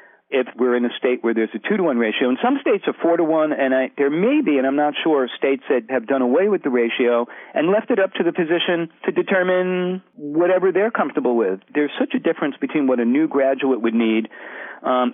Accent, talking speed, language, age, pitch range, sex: American, 220 wpm, English, 40-59, 120-160 Hz, male